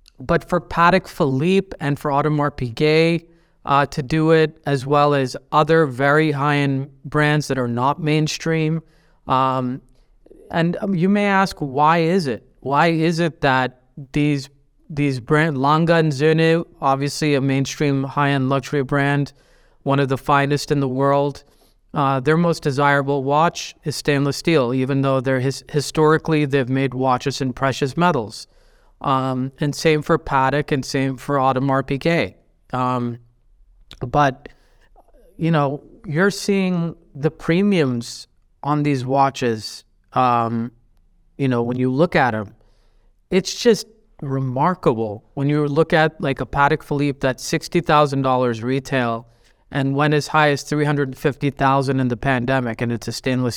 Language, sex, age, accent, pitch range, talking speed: English, male, 30-49, American, 130-155 Hz, 145 wpm